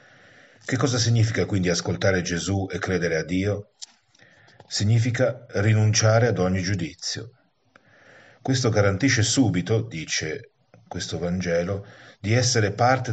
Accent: native